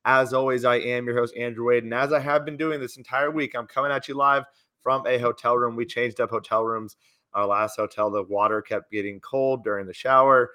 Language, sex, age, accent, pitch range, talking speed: English, male, 30-49, American, 115-145 Hz, 240 wpm